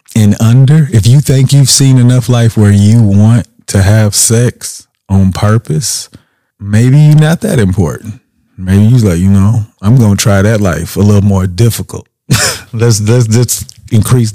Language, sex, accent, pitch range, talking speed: English, male, American, 95-115 Hz, 165 wpm